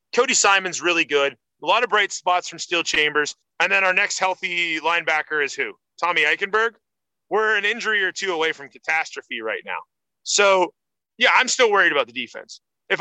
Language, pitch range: English, 145-190 Hz